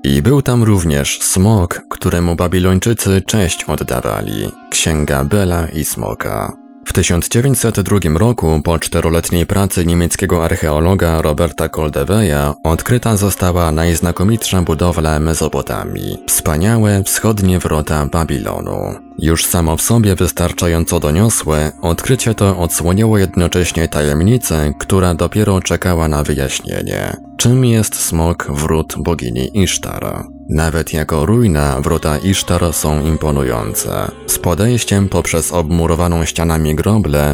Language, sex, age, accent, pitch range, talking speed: Polish, male, 20-39, native, 80-100 Hz, 110 wpm